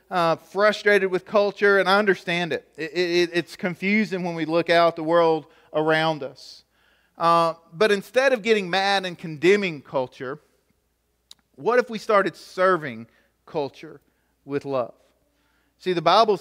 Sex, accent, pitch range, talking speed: male, American, 165-225 Hz, 150 wpm